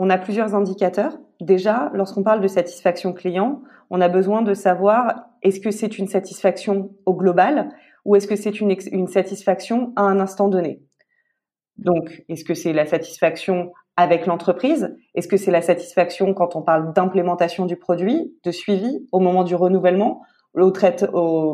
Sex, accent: female, French